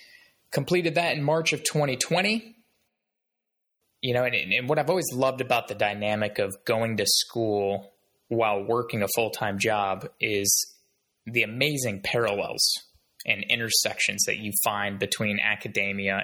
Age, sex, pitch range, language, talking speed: 20-39, male, 105-145 Hz, English, 135 wpm